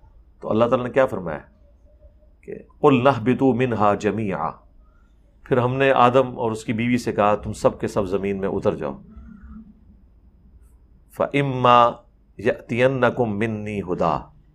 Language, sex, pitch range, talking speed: Urdu, male, 90-130 Hz, 120 wpm